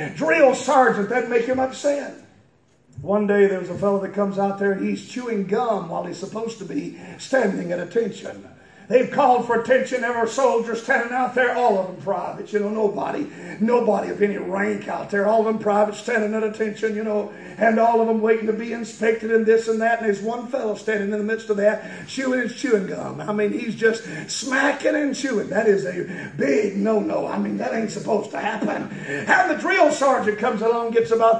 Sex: male